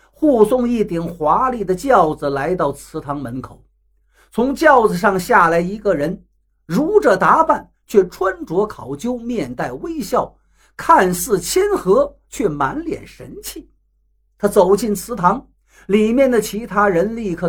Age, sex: 50-69, male